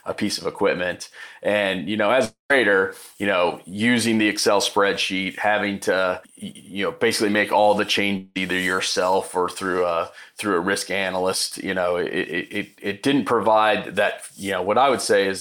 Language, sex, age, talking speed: English, male, 30-49, 190 wpm